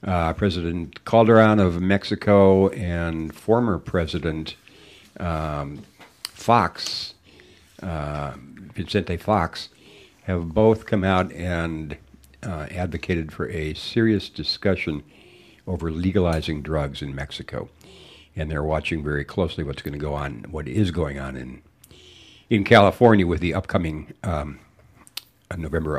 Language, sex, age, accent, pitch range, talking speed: English, male, 60-79, American, 80-100 Hz, 120 wpm